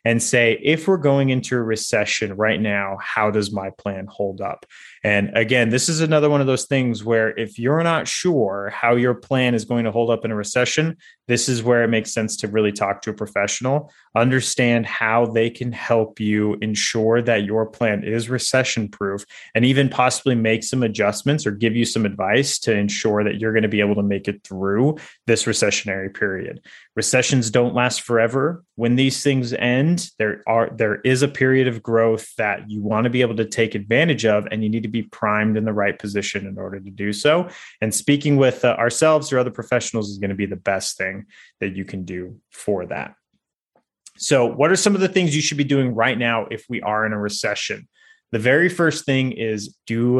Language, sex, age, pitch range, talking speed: English, male, 20-39, 105-130 Hz, 215 wpm